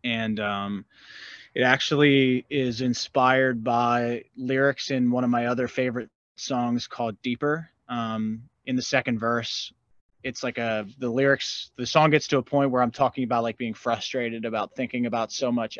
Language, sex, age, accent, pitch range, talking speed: English, male, 20-39, American, 115-135 Hz, 170 wpm